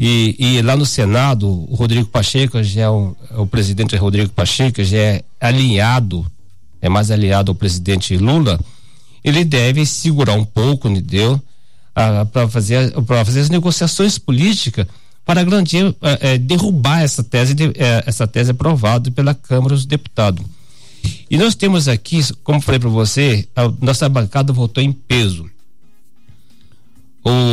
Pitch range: 110-140 Hz